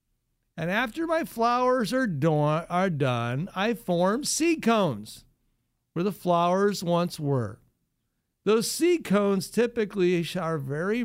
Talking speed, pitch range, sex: 120 wpm, 155-225 Hz, male